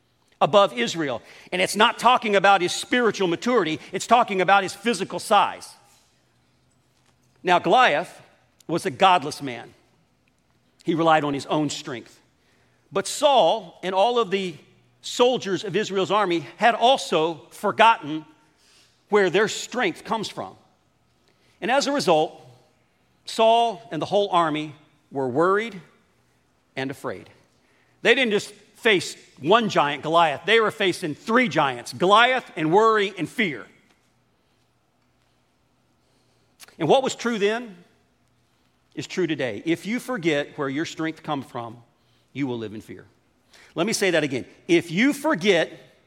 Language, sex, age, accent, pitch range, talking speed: English, male, 50-69, American, 155-225 Hz, 135 wpm